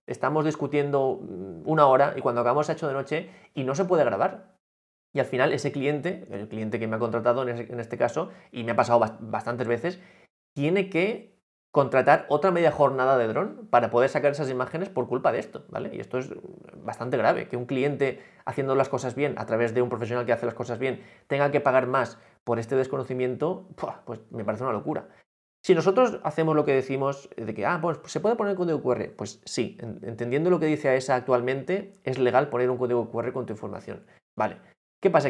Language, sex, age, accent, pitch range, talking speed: Spanish, male, 20-39, Spanish, 120-145 Hz, 210 wpm